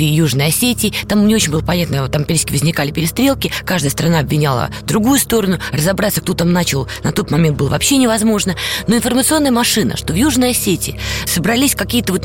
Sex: female